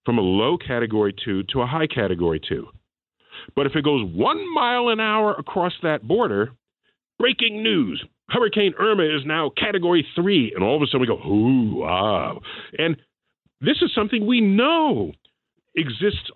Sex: male